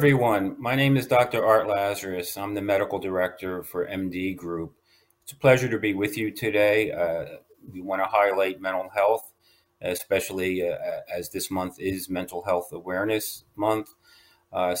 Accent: American